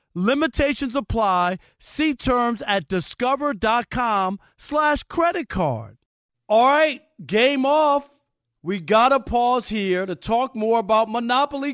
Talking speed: 110 wpm